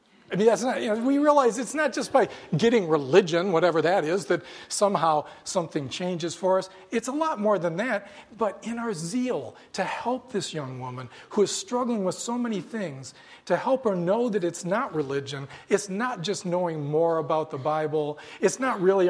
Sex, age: male, 40-59